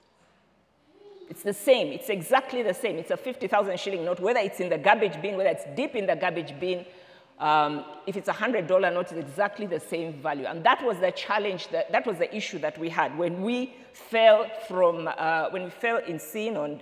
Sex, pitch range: female, 165-225 Hz